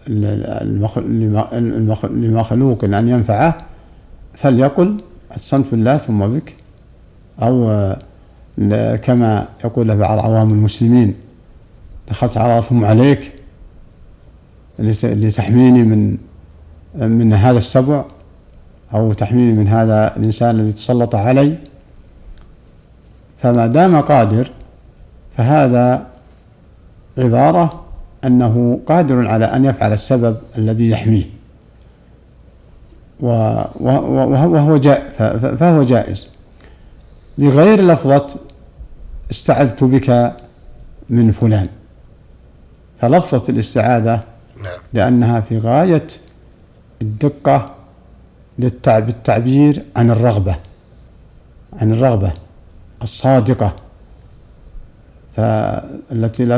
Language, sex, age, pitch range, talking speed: Arabic, male, 50-69, 105-130 Hz, 70 wpm